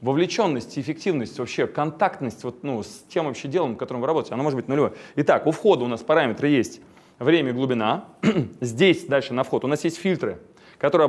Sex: male